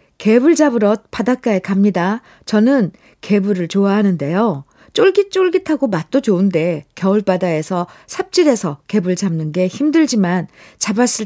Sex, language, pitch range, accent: female, Korean, 205-300 Hz, native